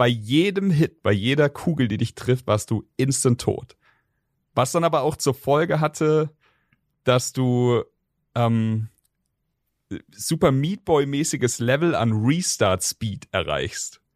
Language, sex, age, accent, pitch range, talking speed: German, male, 40-59, German, 115-150 Hz, 125 wpm